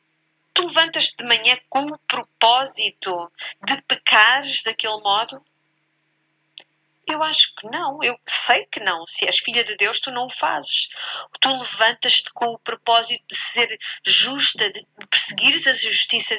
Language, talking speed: Portuguese, 145 wpm